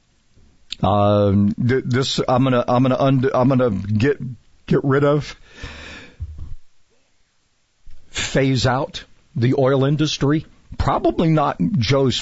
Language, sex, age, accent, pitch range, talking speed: English, male, 50-69, American, 105-135 Hz, 105 wpm